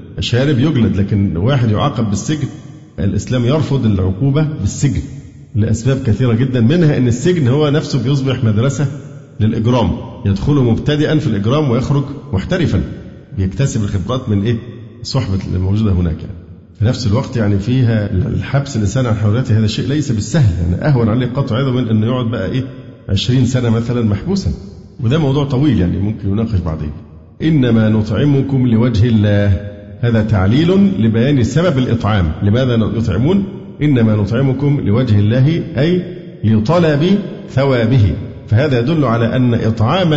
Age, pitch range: 50-69, 105-140 Hz